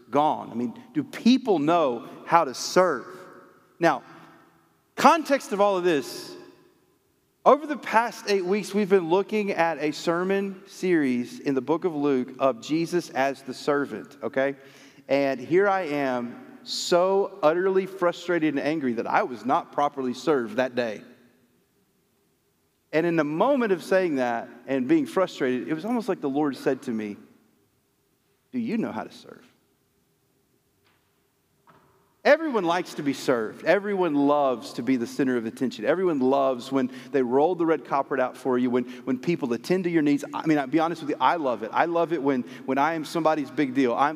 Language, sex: English, male